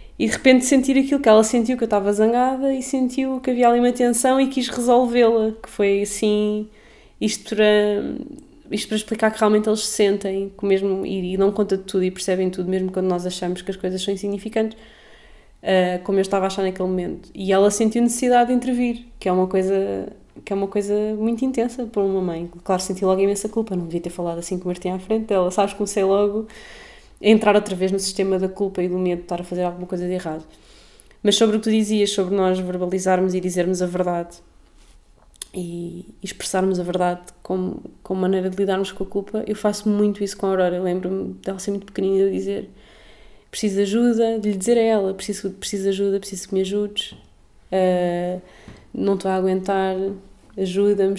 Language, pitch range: Portuguese, 185-215 Hz